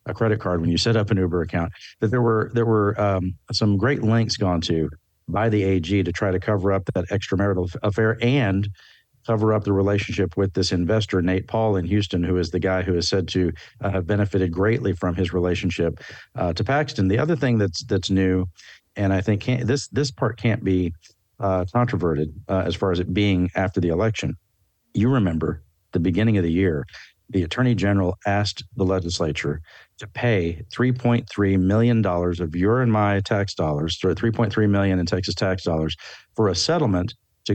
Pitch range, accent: 90-110 Hz, American